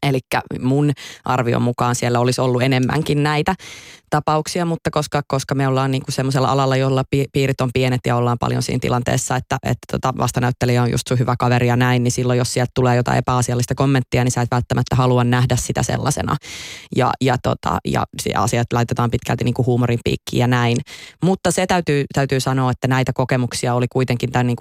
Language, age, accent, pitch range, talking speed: Finnish, 20-39, native, 120-135 Hz, 180 wpm